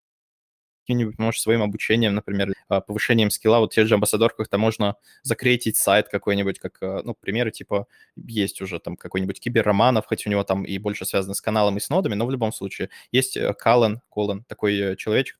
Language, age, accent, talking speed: Russian, 20-39, native, 170 wpm